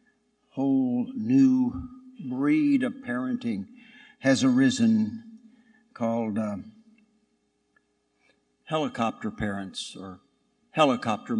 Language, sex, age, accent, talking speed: English, male, 60-79, American, 70 wpm